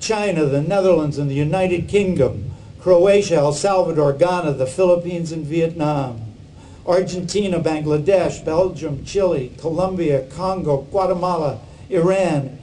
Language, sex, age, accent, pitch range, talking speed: English, male, 60-79, American, 145-195 Hz, 110 wpm